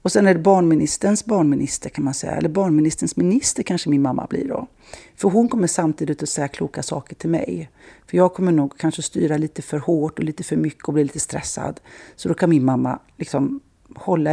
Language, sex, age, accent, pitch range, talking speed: English, female, 40-59, Swedish, 155-210 Hz, 215 wpm